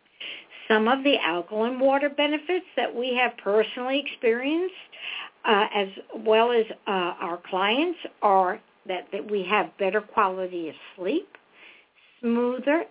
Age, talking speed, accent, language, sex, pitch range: 60-79, 130 wpm, American, English, female, 210-280 Hz